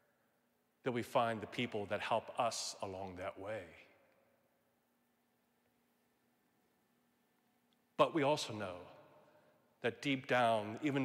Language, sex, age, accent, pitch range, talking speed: English, male, 40-59, American, 110-130 Hz, 105 wpm